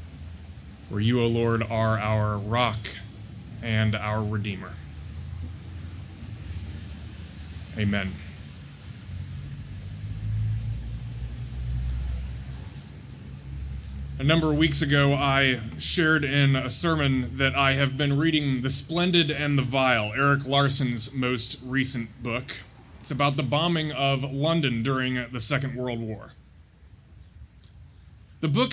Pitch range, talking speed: 105-140 Hz, 100 wpm